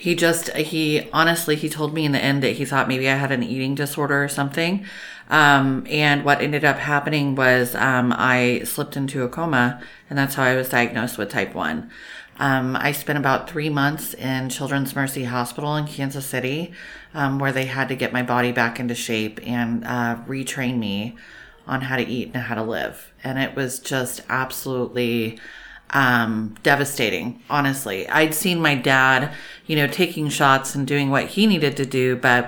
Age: 30-49